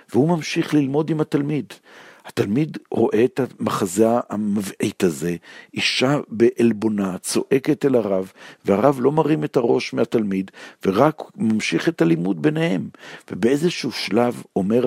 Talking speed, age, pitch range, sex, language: 120 wpm, 60-79, 100-125 Hz, male, Hebrew